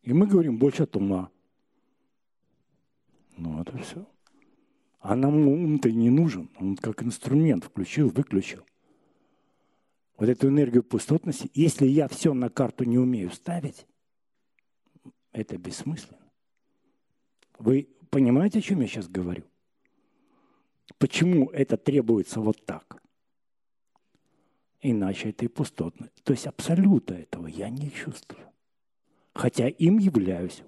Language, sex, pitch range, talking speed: Russian, male, 110-155 Hz, 115 wpm